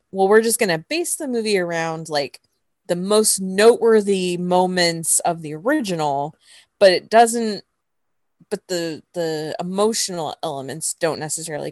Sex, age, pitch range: female, 20-39, 155-205 Hz